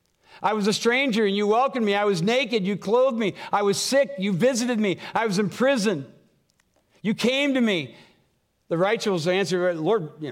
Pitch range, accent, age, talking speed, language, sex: 200-260 Hz, American, 60-79, 190 wpm, English, male